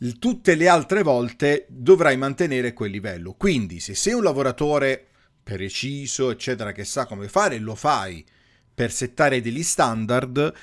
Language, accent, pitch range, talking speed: Italian, native, 110-145 Hz, 140 wpm